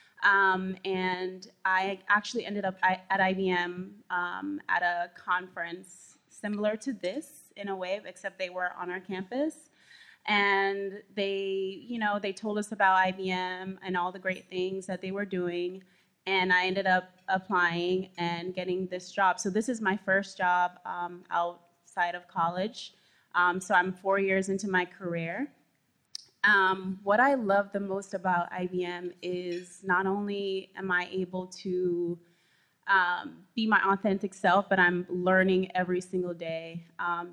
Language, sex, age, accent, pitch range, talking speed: English, female, 20-39, American, 180-195 Hz, 155 wpm